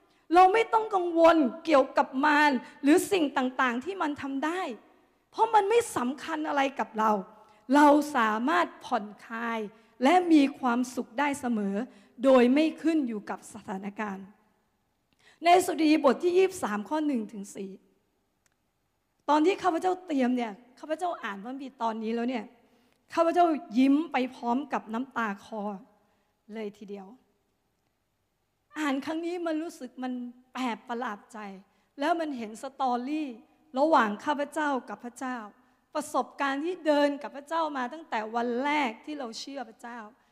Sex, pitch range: female, 225-305 Hz